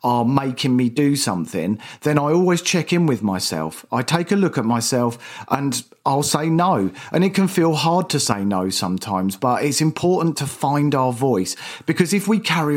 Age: 40-59